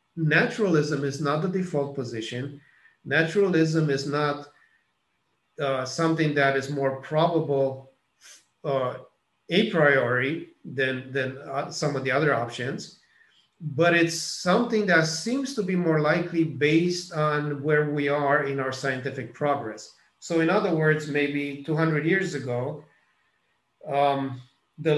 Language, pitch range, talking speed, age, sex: English, 135-165 Hz, 125 wpm, 40-59, male